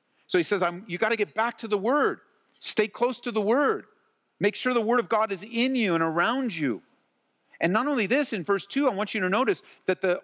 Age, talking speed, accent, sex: 50-69, 245 wpm, American, male